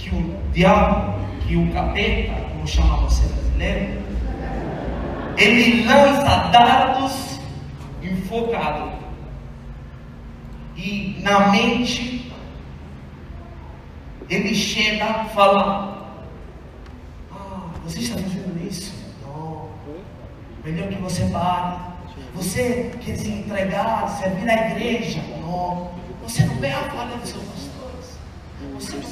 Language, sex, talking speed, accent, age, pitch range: Portuguese, male, 100 wpm, Brazilian, 30-49, 150-215 Hz